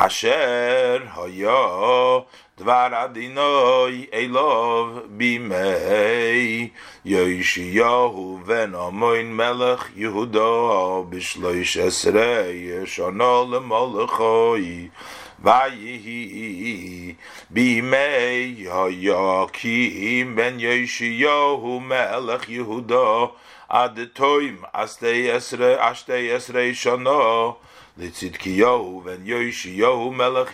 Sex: male